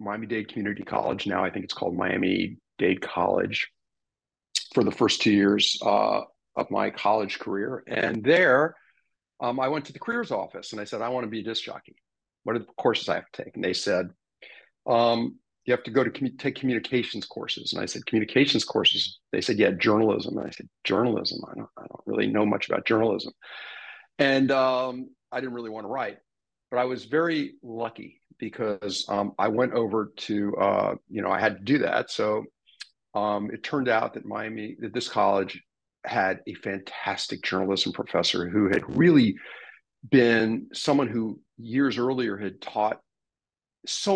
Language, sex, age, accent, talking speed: English, male, 50-69, American, 185 wpm